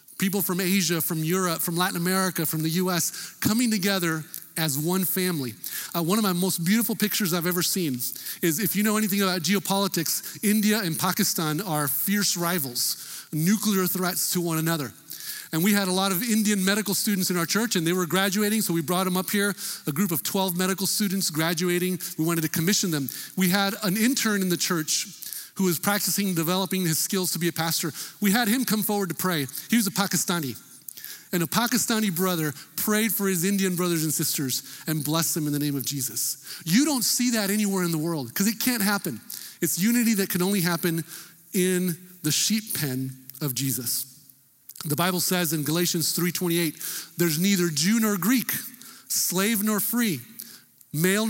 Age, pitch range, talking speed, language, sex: 40-59, 160-200 Hz, 190 wpm, English, male